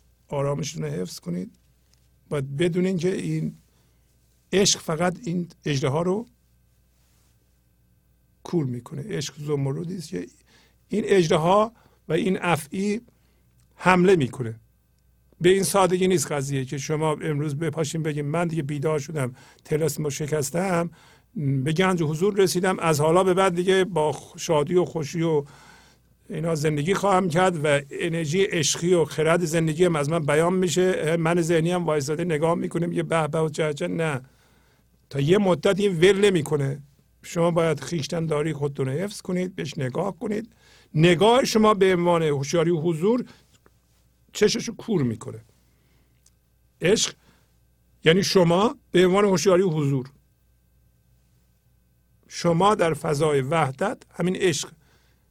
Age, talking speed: 50-69, 135 wpm